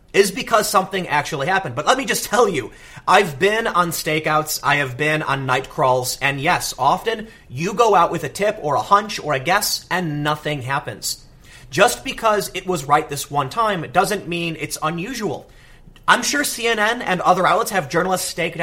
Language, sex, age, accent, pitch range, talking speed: English, male, 30-49, American, 150-210 Hz, 195 wpm